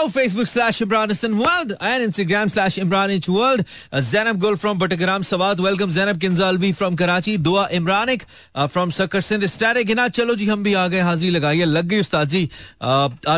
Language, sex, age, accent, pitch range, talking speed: Hindi, male, 30-49, native, 140-195 Hz, 185 wpm